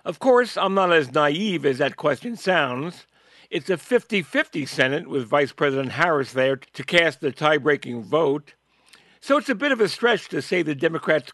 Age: 60-79